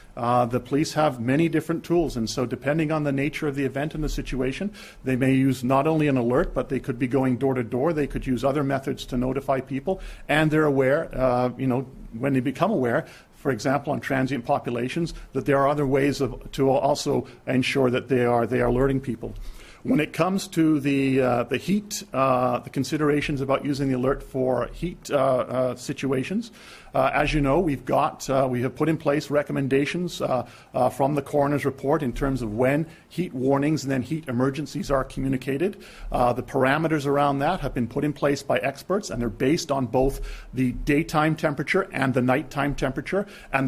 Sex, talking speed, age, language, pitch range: male, 205 wpm, 50-69, English, 130-150 Hz